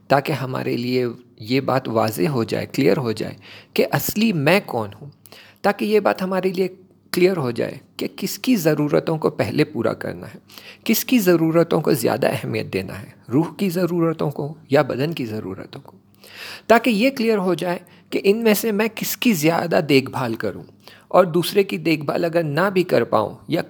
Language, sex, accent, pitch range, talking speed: English, male, Indian, 125-190 Hz, 180 wpm